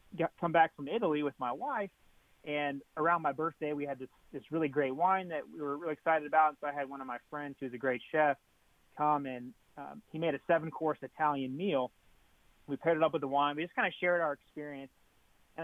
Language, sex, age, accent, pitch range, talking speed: English, male, 30-49, American, 130-160 Hz, 230 wpm